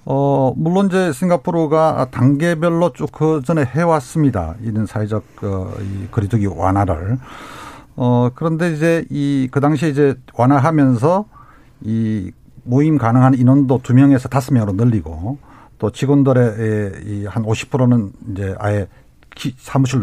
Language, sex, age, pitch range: Korean, male, 50-69, 115-155 Hz